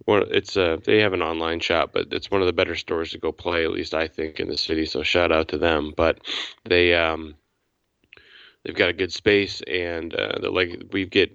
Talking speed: 240 wpm